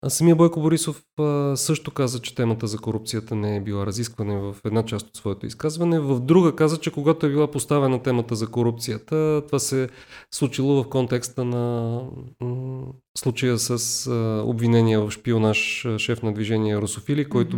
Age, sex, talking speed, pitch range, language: 30-49, male, 160 wpm, 115-150 Hz, Bulgarian